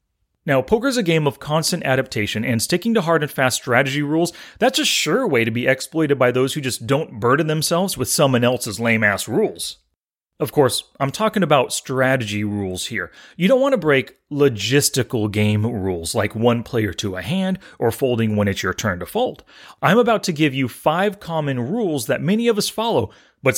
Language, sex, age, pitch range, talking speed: English, male, 30-49, 115-175 Hz, 200 wpm